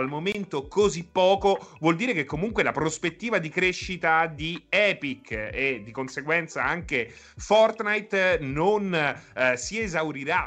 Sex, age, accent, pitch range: male, 30-49, native, 130-180 Hz